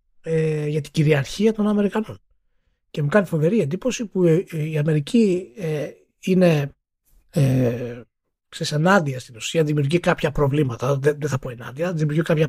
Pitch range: 140-185 Hz